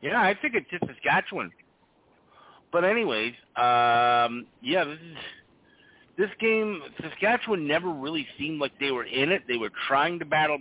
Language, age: English, 50-69